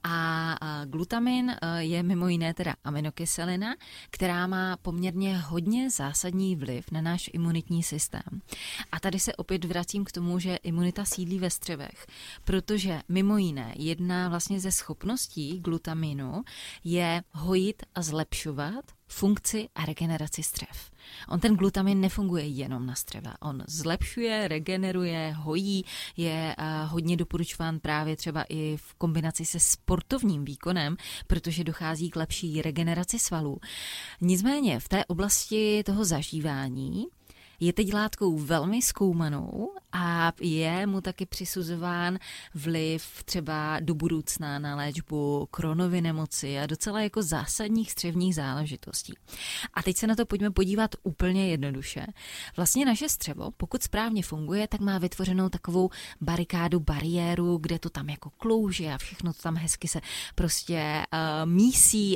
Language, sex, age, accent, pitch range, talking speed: Czech, female, 20-39, native, 160-190 Hz, 130 wpm